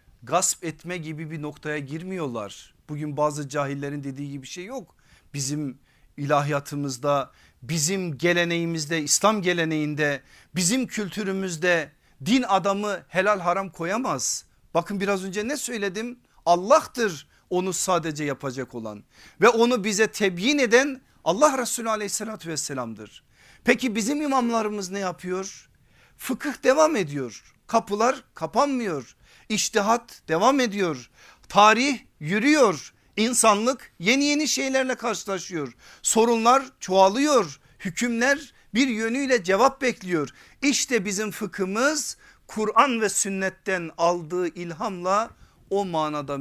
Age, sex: 50-69, male